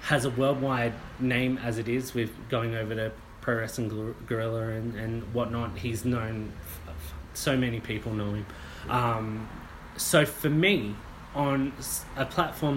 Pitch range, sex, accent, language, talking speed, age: 110-125 Hz, male, Australian, English, 150 wpm, 20-39